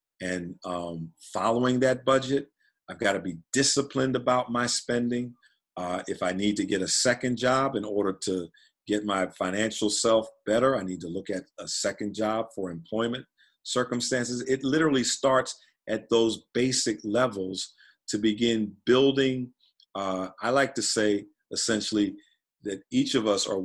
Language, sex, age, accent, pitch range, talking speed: English, male, 40-59, American, 100-130 Hz, 155 wpm